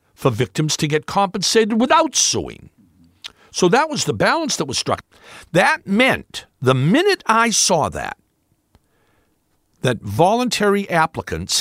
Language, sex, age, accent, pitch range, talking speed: English, male, 60-79, American, 125-195 Hz, 130 wpm